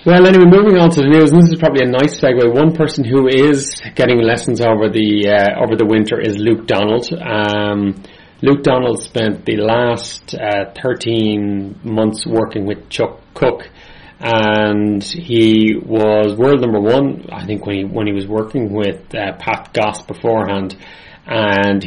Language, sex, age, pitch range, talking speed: English, male, 30-49, 100-120 Hz, 170 wpm